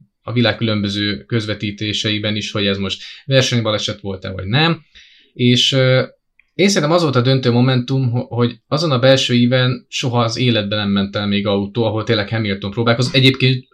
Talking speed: 170 wpm